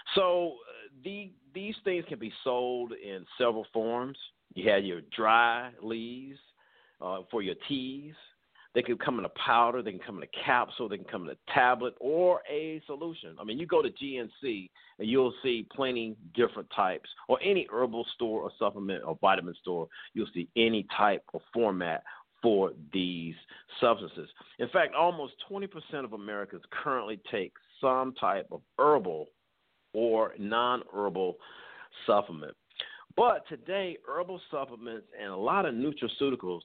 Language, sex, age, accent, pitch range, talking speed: English, male, 50-69, American, 110-160 Hz, 155 wpm